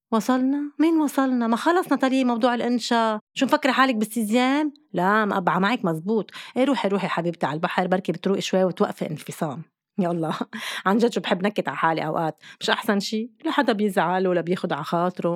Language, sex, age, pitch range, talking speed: Arabic, female, 20-39, 175-245 Hz, 175 wpm